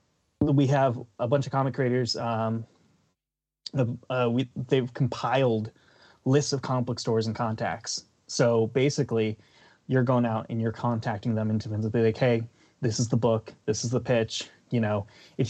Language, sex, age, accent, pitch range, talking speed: English, male, 20-39, American, 115-140 Hz, 165 wpm